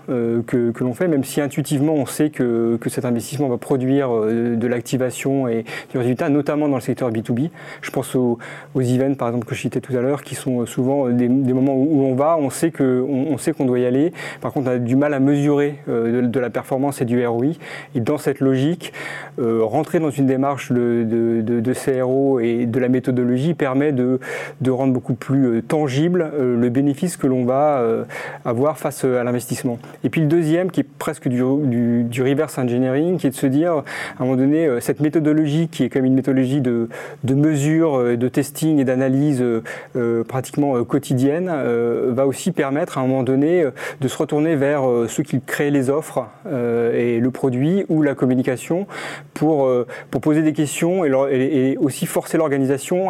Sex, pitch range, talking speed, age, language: male, 125-150 Hz, 200 wpm, 30-49, French